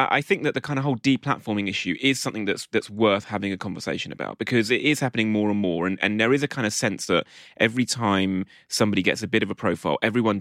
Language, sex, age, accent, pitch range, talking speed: English, male, 30-49, British, 100-125 Hz, 255 wpm